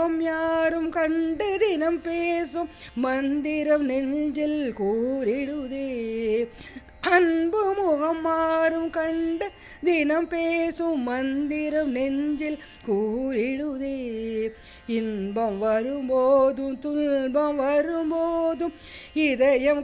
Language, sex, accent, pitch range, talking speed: Tamil, female, native, 285-405 Hz, 60 wpm